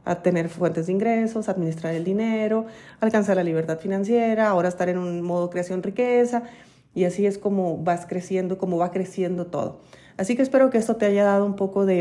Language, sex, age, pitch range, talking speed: Spanish, female, 30-49, 180-225 Hz, 205 wpm